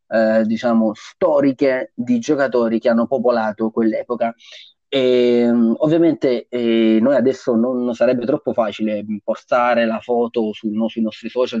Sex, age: male, 20-39